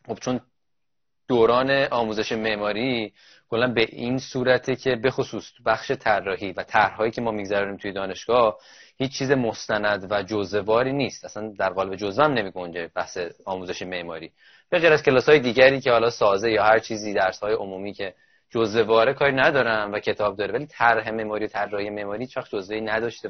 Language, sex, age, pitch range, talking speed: Persian, male, 20-39, 110-135 Hz, 165 wpm